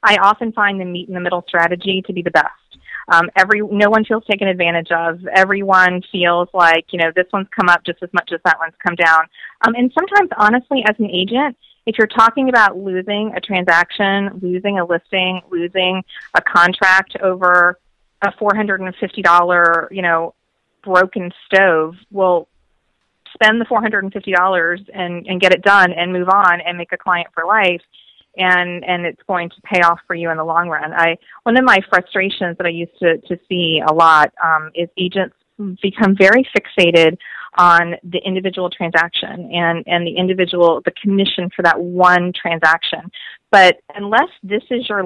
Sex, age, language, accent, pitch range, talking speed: female, 30-49, English, American, 170-200 Hz, 175 wpm